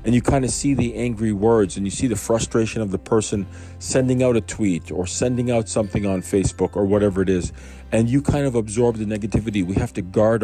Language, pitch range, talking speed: English, 100-120 Hz, 235 wpm